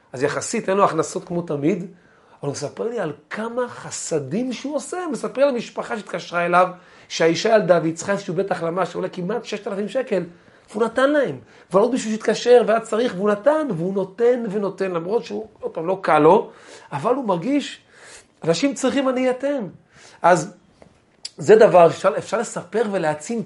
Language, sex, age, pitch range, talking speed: Hebrew, male, 40-59, 165-245 Hz, 170 wpm